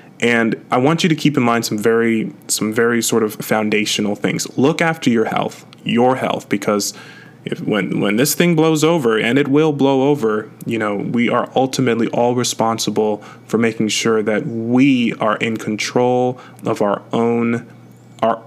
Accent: American